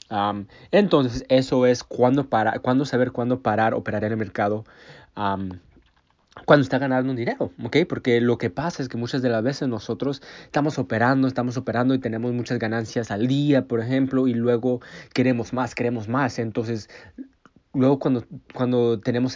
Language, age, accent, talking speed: Spanish, 30-49, Mexican, 165 wpm